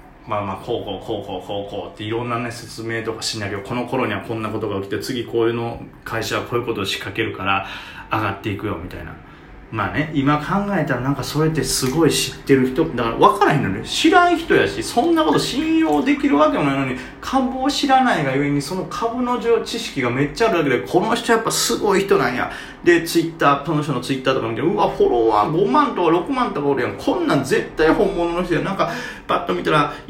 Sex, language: male, Japanese